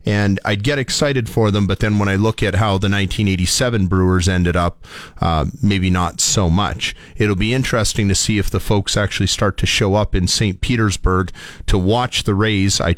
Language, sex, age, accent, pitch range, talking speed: English, male, 40-59, American, 90-110 Hz, 205 wpm